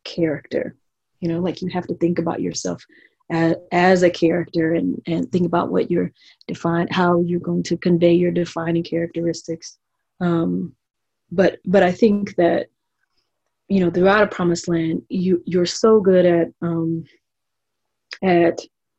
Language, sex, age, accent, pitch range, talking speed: English, female, 30-49, American, 170-185 Hz, 150 wpm